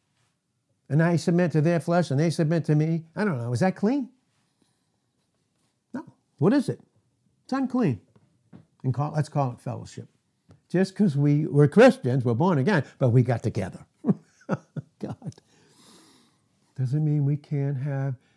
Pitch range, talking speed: 125-190 Hz, 155 wpm